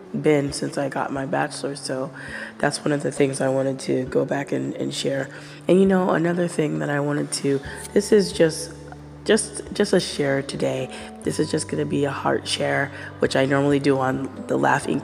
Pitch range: 100-150 Hz